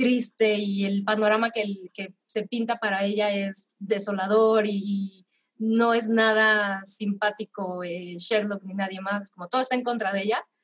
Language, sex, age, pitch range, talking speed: Spanish, female, 20-39, 200-245 Hz, 175 wpm